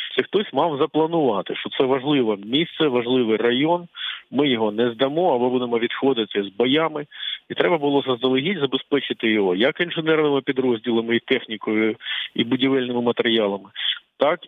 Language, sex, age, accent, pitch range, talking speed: Ukrainian, male, 50-69, native, 120-175 Hz, 140 wpm